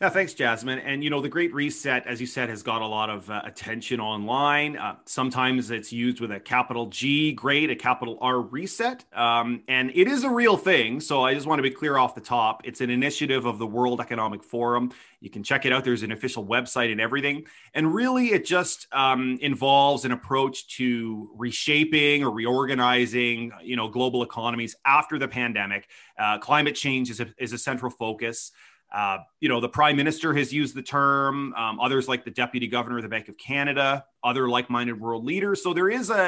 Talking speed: 210 wpm